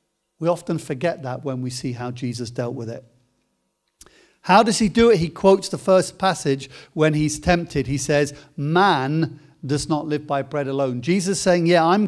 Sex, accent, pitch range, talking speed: male, British, 145-190 Hz, 190 wpm